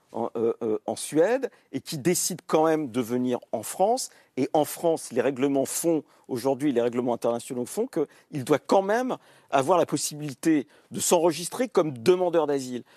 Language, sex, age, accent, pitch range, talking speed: French, male, 50-69, French, 125-170 Hz, 170 wpm